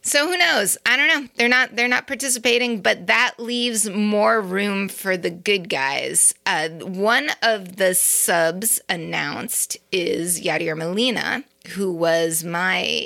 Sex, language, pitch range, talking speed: female, English, 180-240 Hz, 145 wpm